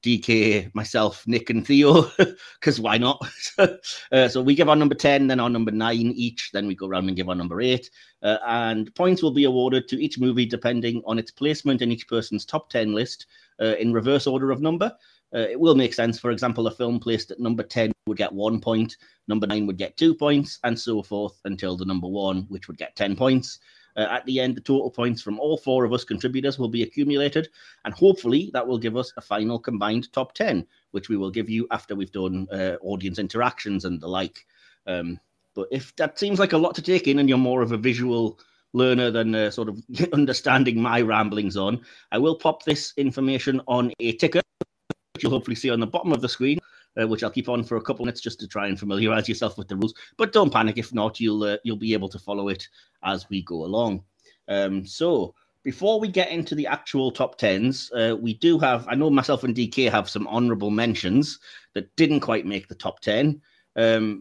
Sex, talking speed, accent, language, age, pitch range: male, 225 wpm, British, English, 30-49, 105-135 Hz